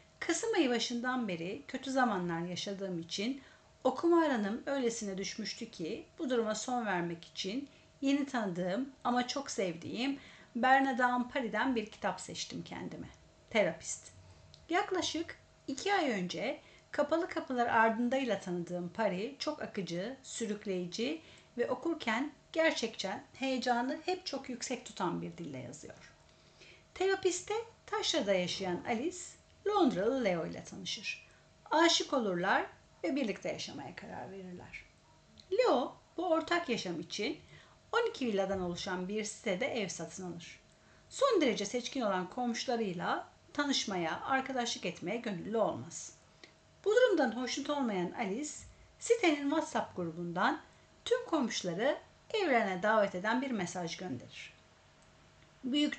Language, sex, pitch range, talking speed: Turkish, female, 195-290 Hz, 115 wpm